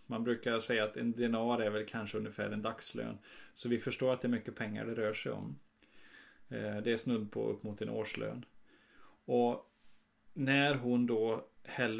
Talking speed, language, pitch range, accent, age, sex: 185 wpm, Swedish, 110-130 Hz, native, 30-49, male